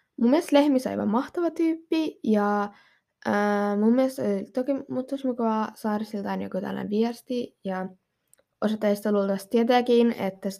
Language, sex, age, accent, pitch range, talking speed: Finnish, female, 20-39, native, 205-255 Hz, 120 wpm